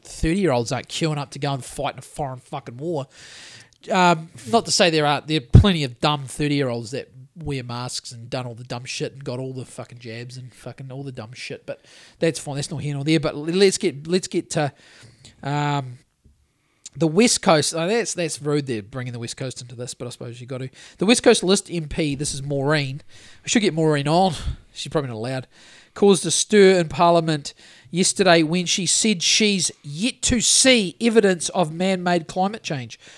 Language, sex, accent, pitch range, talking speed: English, male, Australian, 140-195 Hz, 210 wpm